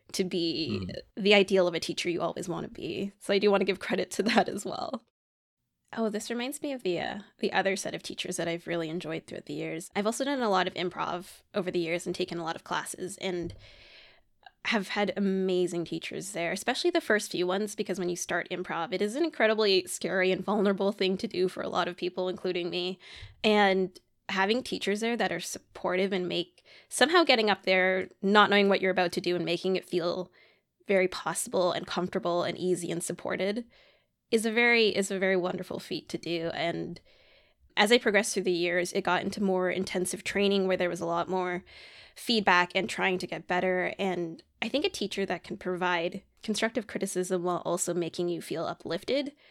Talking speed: 210 wpm